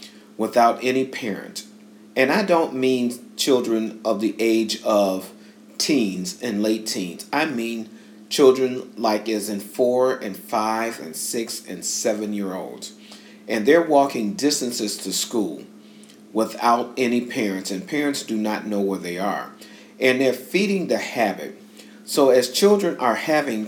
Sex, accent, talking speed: male, American, 145 wpm